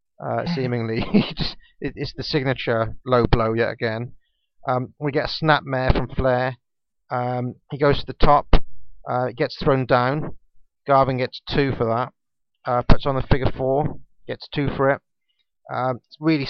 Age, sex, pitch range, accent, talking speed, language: 30-49, male, 125-140 Hz, British, 155 wpm, English